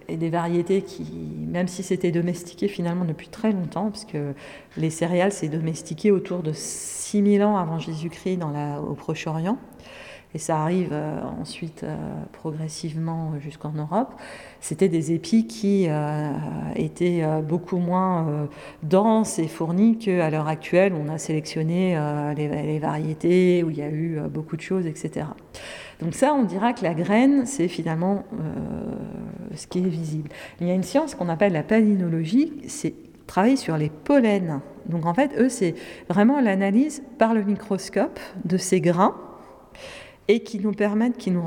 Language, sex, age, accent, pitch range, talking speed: French, female, 40-59, French, 160-205 Hz, 155 wpm